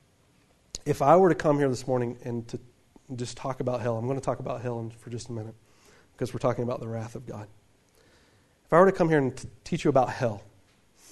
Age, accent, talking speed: 40-59, American, 230 wpm